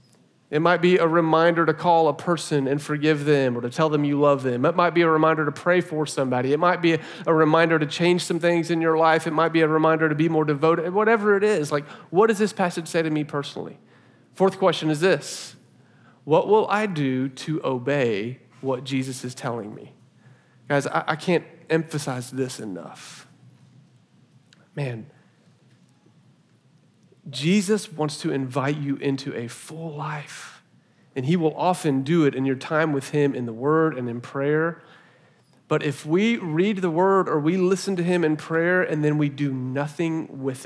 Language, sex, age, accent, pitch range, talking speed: English, male, 40-59, American, 140-170 Hz, 190 wpm